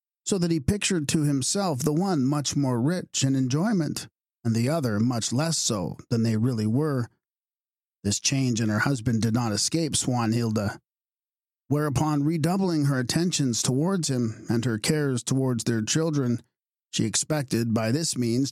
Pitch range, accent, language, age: 110-145 Hz, American, English, 50-69